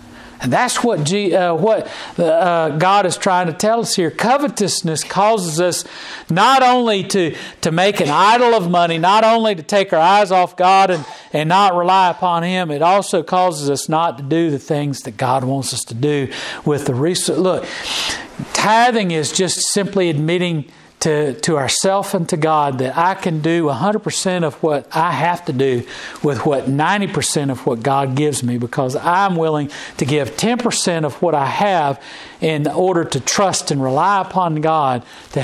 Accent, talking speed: American, 185 wpm